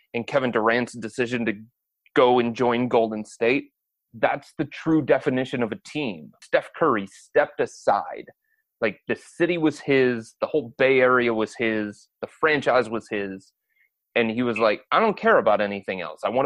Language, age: English, 30-49